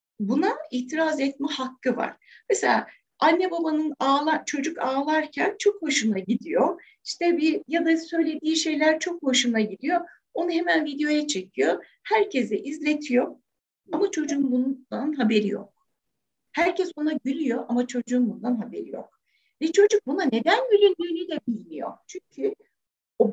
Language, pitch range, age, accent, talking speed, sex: Turkish, 250-380 Hz, 60-79, native, 130 wpm, female